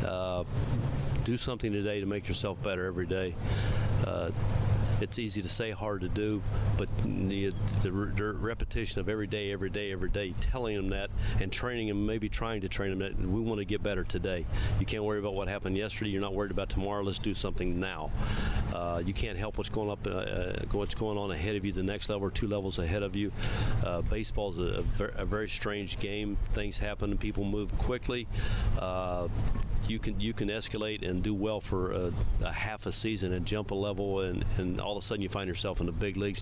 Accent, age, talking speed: American, 40-59, 215 wpm